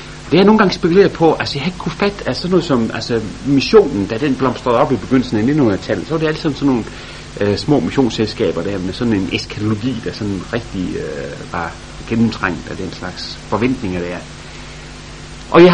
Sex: male